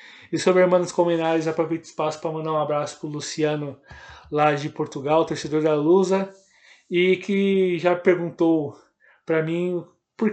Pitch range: 155-180 Hz